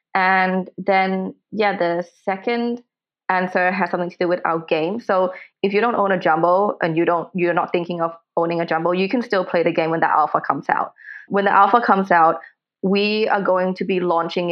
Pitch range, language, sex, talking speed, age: 165-195 Hz, English, female, 215 wpm, 20-39